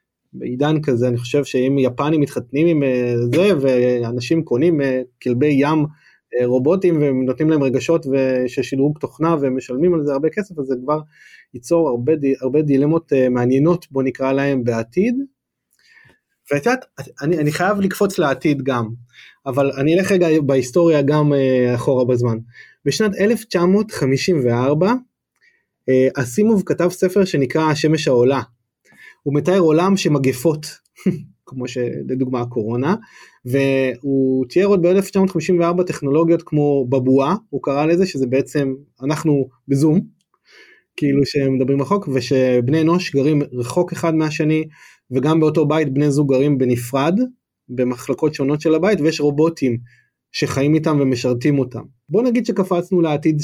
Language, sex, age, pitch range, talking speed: Hebrew, male, 20-39, 130-165 Hz, 125 wpm